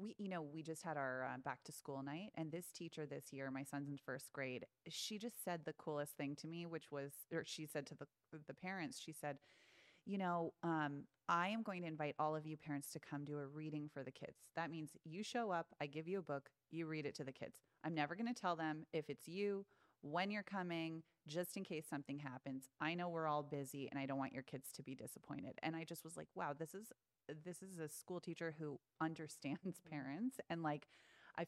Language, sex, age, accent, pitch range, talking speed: English, female, 30-49, American, 145-175 Hz, 240 wpm